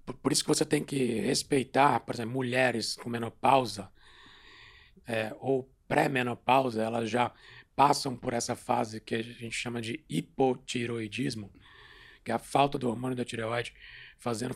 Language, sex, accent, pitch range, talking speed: Portuguese, male, Brazilian, 115-135 Hz, 145 wpm